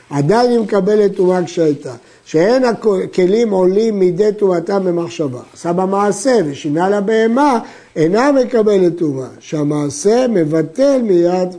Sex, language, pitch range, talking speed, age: male, Hebrew, 160-220 Hz, 110 wpm, 60-79